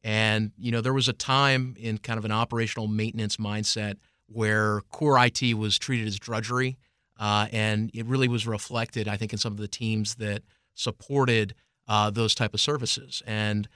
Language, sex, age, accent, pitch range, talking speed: English, male, 30-49, American, 105-120 Hz, 185 wpm